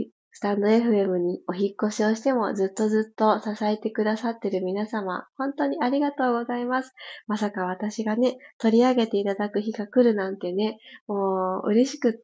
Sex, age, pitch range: female, 20-39, 195-255 Hz